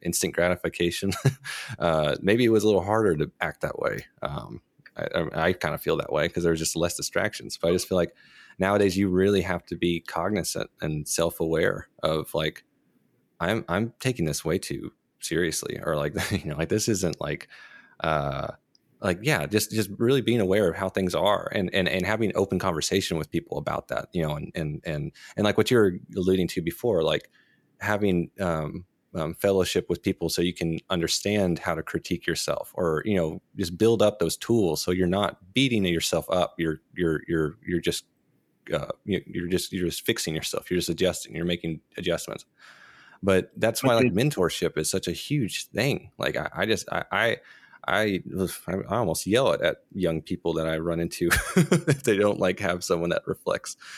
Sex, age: male, 20-39